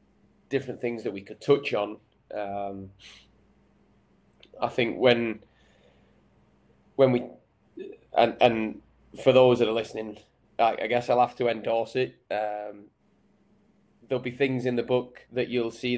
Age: 20-39